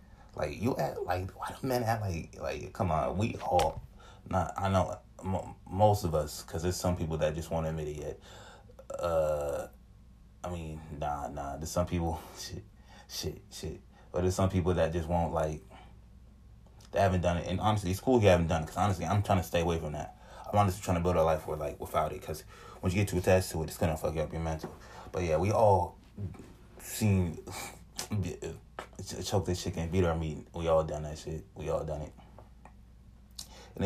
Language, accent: English, American